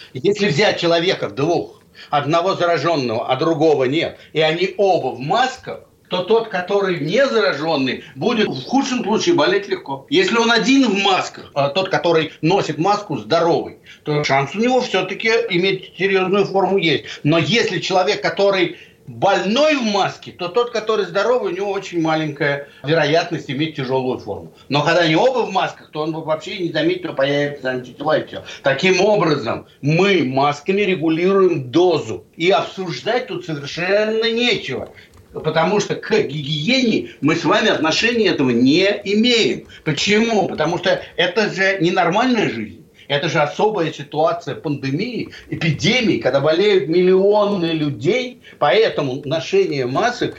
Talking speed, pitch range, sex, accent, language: 145 wpm, 155-210 Hz, male, native, Russian